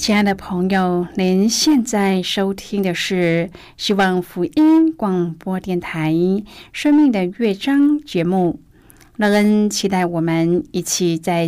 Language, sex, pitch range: Chinese, female, 165-205 Hz